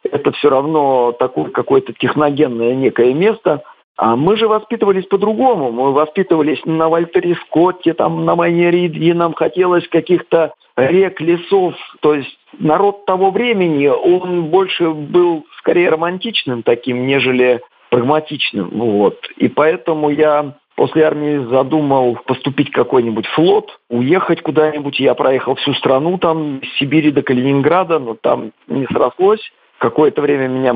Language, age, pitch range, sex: Russian, 50-69, 130-180 Hz, male